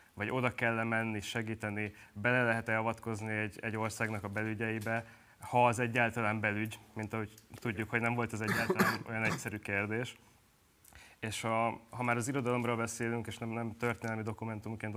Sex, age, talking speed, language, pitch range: male, 20-39, 155 wpm, Hungarian, 110-120 Hz